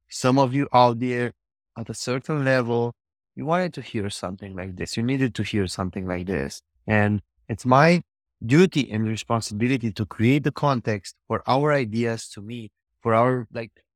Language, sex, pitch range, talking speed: English, male, 100-120 Hz, 175 wpm